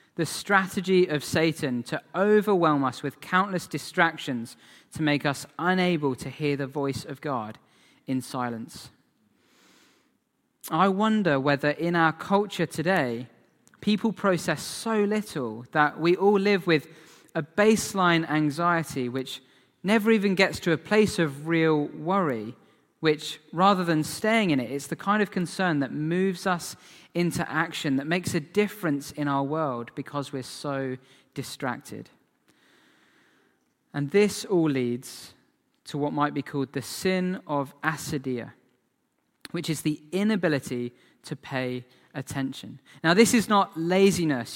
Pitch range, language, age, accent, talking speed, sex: 140-185 Hz, English, 20-39, British, 135 wpm, male